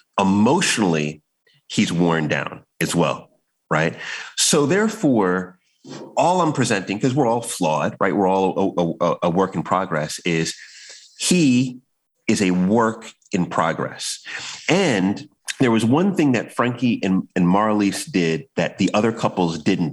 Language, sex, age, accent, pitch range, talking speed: English, male, 30-49, American, 95-130 Hz, 140 wpm